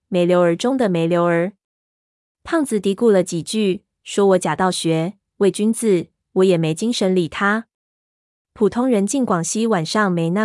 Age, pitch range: 20-39, 170-210 Hz